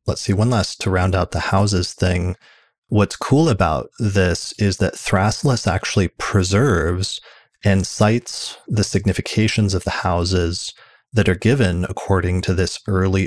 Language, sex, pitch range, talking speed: English, male, 90-110 Hz, 150 wpm